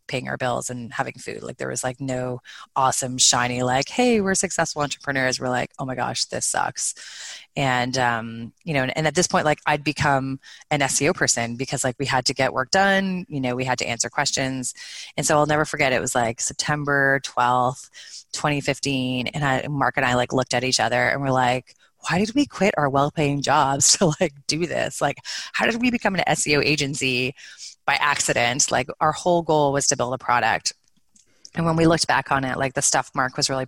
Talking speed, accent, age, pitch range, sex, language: 215 wpm, American, 20-39, 125-150 Hz, female, English